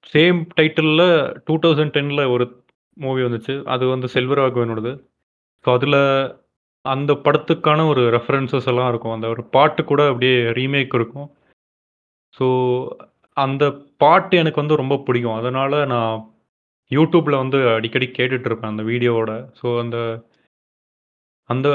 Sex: male